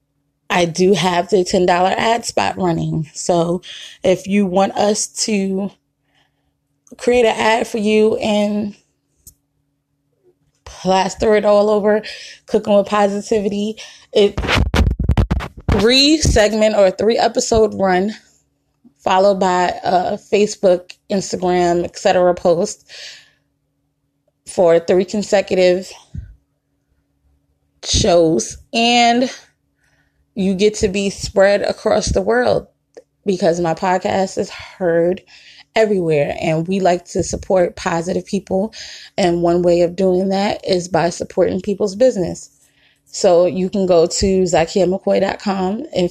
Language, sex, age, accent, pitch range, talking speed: English, female, 20-39, American, 170-210 Hz, 115 wpm